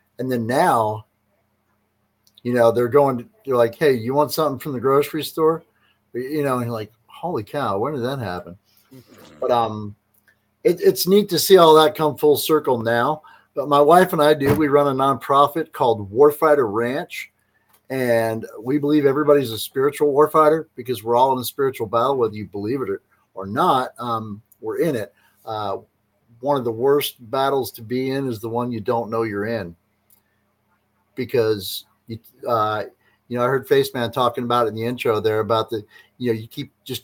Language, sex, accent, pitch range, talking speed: English, male, American, 110-145 Hz, 190 wpm